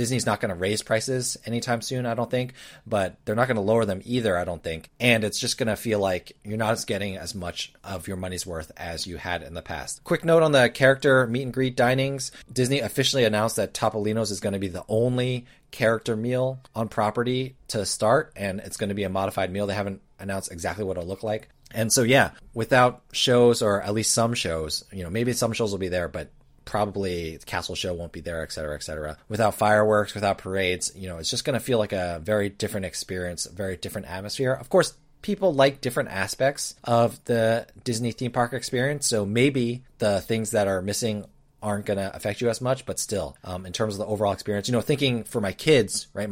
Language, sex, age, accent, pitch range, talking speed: English, male, 30-49, American, 95-125 Hz, 230 wpm